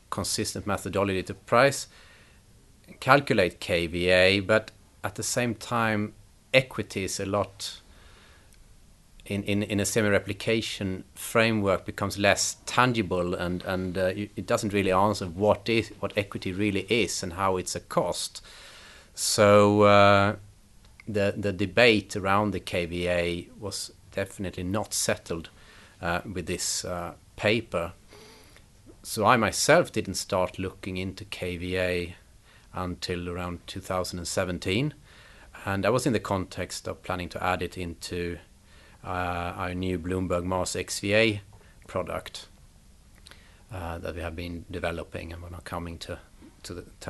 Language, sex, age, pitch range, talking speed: English, male, 30-49, 90-105 Hz, 130 wpm